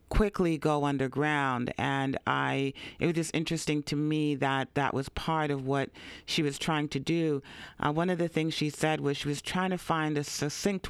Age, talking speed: 40-59, 205 wpm